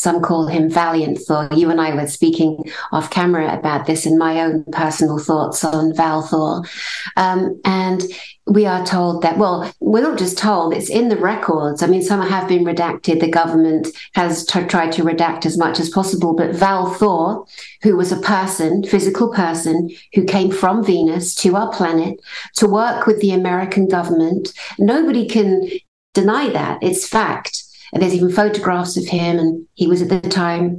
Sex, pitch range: female, 165-190 Hz